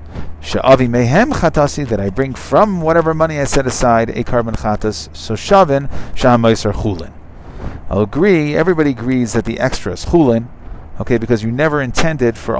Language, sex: English, male